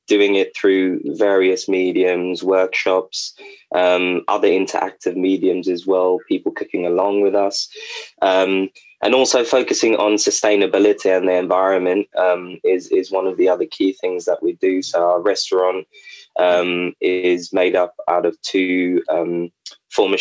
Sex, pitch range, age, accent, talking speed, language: male, 90-100 Hz, 20-39, British, 150 wpm, English